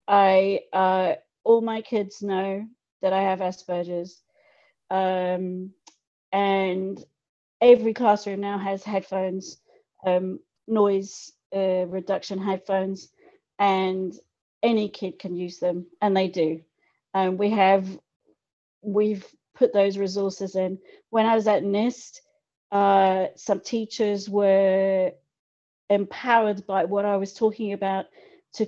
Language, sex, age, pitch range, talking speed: English, female, 40-59, 185-210 Hz, 115 wpm